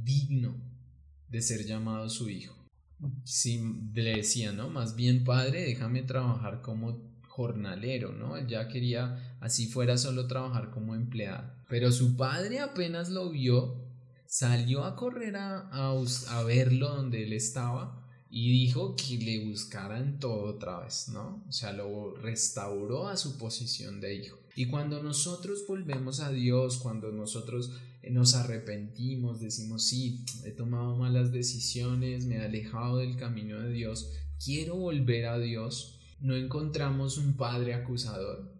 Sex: male